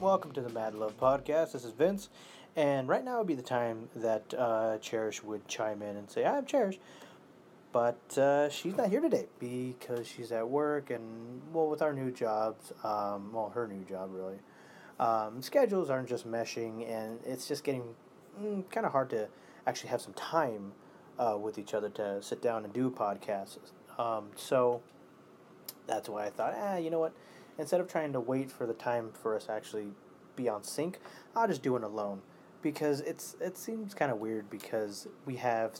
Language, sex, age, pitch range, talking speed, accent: English, male, 30-49, 105-140 Hz, 195 wpm, American